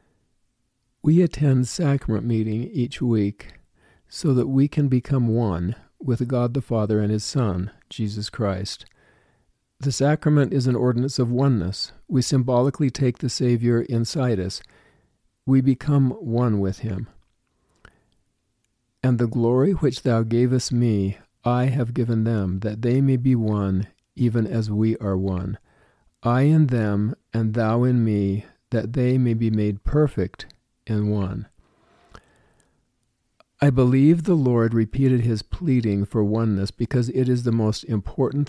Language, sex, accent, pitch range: English, male, American, 105-130 Hz